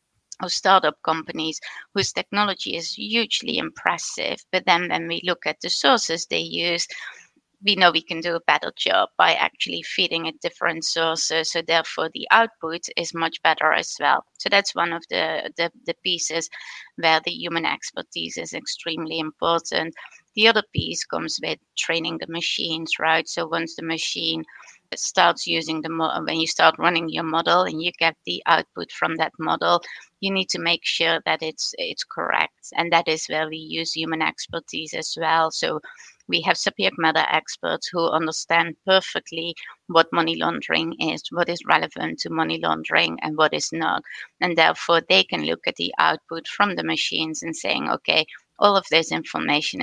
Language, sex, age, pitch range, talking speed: English, female, 20-39, 160-175 Hz, 175 wpm